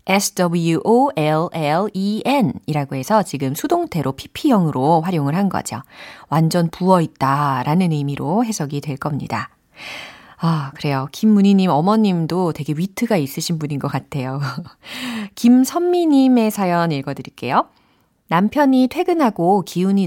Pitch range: 150-220 Hz